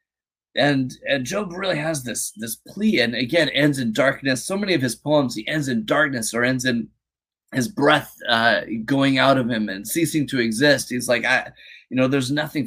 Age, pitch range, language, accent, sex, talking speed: 30-49, 130-205 Hz, English, American, male, 205 wpm